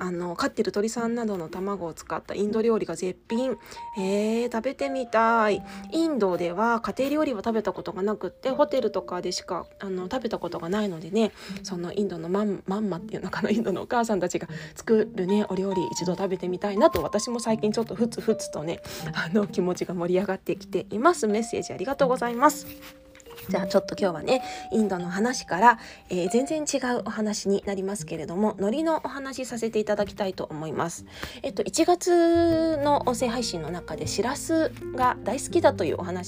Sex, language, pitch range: female, Japanese, 185-240 Hz